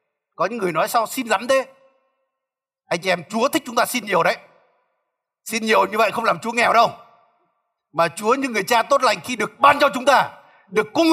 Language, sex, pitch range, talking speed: Vietnamese, male, 180-250 Hz, 225 wpm